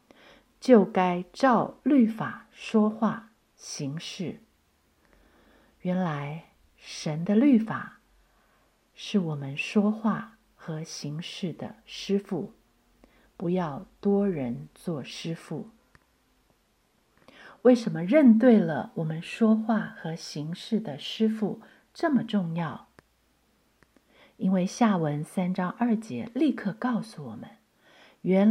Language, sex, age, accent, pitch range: Chinese, female, 50-69, native, 165-220 Hz